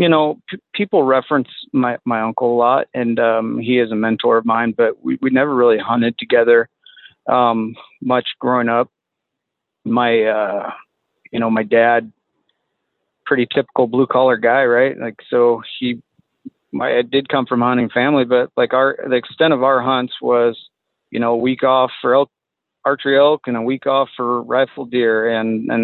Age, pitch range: 40-59, 120-135 Hz